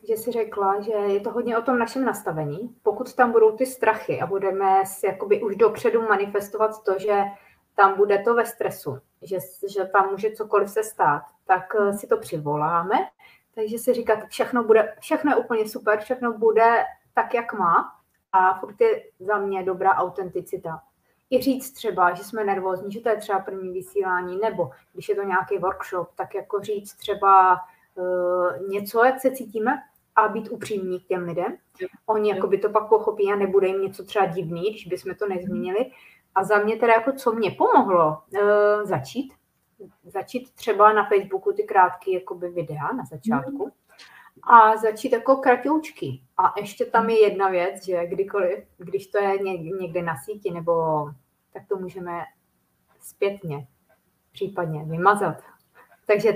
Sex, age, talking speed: female, 30-49, 165 wpm